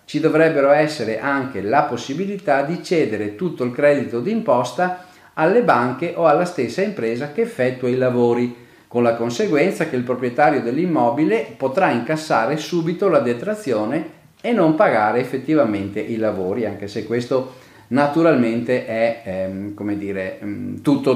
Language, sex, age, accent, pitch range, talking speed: Italian, male, 40-59, native, 115-150 Hz, 135 wpm